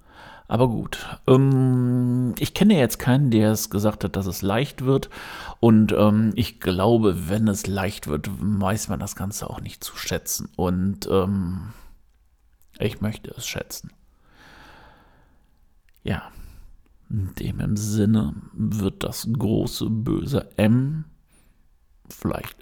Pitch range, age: 95-115 Hz, 50-69